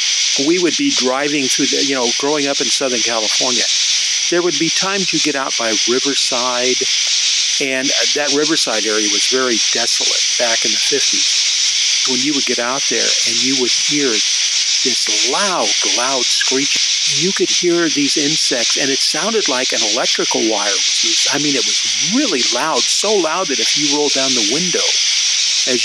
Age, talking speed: 50-69, 175 wpm